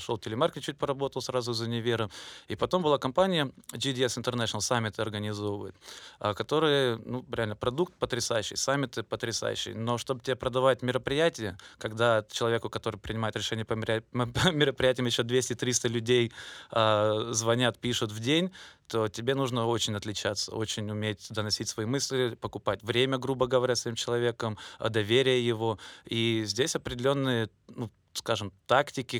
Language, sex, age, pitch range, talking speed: Russian, male, 20-39, 110-130 Hz, 140 wpm